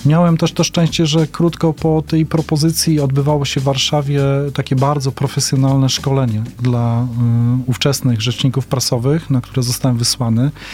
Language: Polish